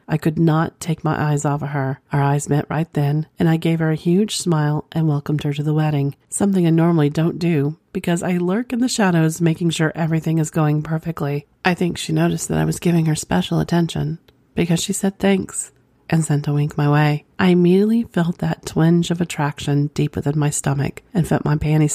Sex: female